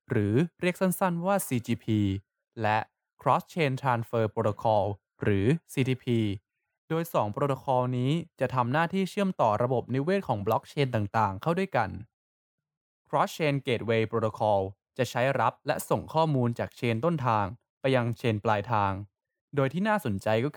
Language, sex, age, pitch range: Thai, male, 20-39, 110-140 Hz